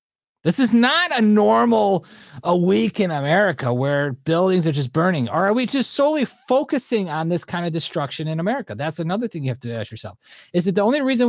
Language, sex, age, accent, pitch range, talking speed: English, male, 30-49, American, 120-180 Hz, 205 wpm